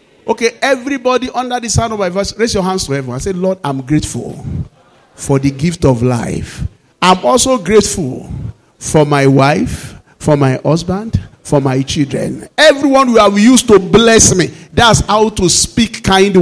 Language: English